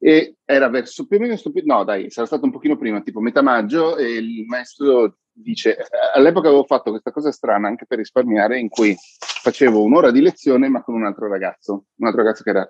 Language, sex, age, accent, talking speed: Italian, male, 30-49, native, 215 wpm